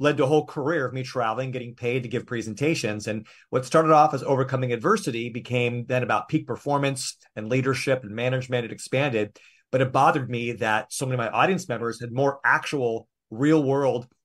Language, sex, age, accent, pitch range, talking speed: English, male, 30-49, American, 120-150 Hz, 195 wpm